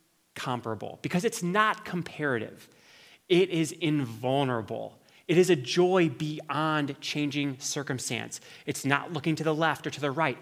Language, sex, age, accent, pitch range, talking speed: English, male, 30-49, American, 130-165 Hz, 145 wpm